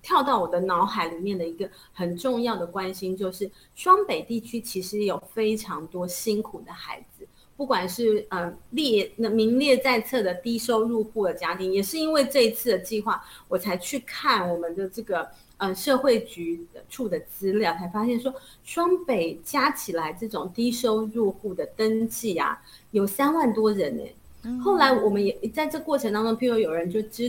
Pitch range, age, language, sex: 185-255 Hz, 30-49, Chinese, female